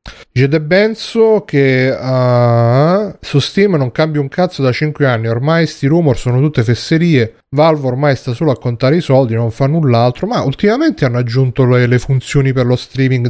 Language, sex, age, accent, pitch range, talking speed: Italian, male, 30-49, native, 110-130 Hz, 185 wpm